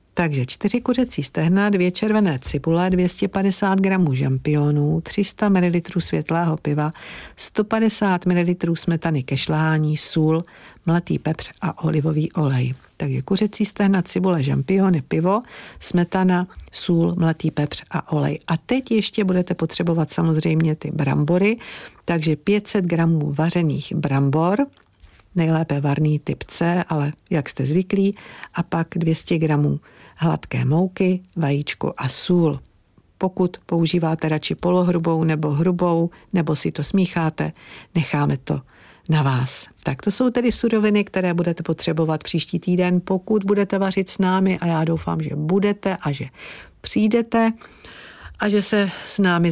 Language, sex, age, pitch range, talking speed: Czech, female, 50-69, 155-190 Hz, 130 wpm